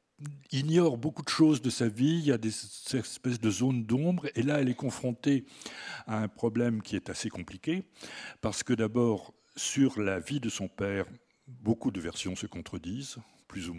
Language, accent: French, French